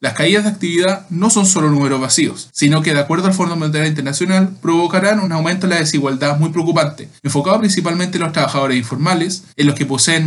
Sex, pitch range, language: male, 140-180 Hz, Spanish